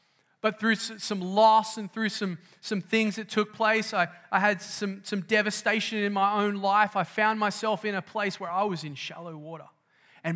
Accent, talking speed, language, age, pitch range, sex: Australian, 205 wpm, English, 20-39, 150-205 Hz, male